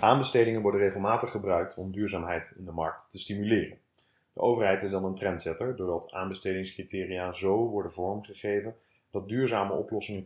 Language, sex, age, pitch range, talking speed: Dutch, male, 30-49, 90-105 Hz, 145 wpm